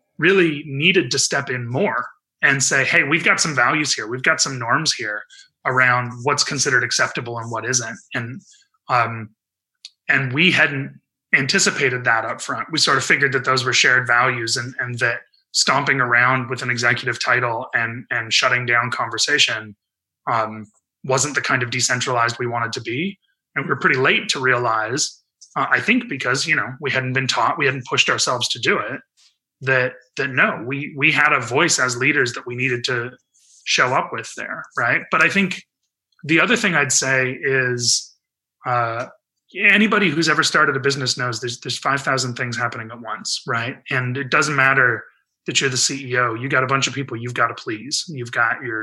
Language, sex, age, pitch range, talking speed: English, male, 30-49, 120-140 Hz, 195 wpm